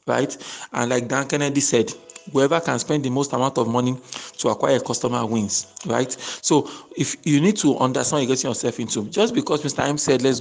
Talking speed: 215 wpm